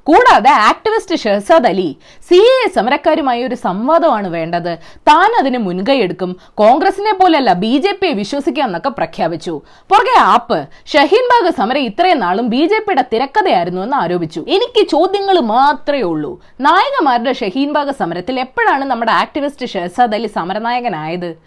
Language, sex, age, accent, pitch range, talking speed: Malayalam, female, 20-39, native, 220-350 Hz, 120 wpm